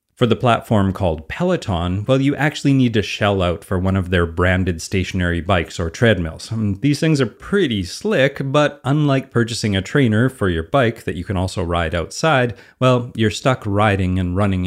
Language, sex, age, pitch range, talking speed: English, male, 30-49, 95-125 Hz, 190 wpm